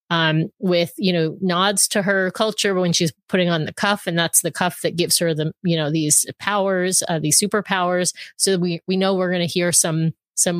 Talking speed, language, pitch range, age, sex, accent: 225 wpm, English, 165-190 Hz, 30-49, female, American